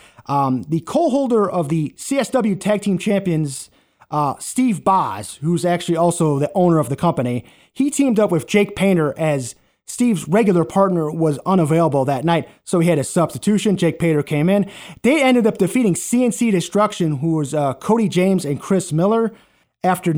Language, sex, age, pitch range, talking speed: English, male, 30-49, 155-200 Hz, 175 wpm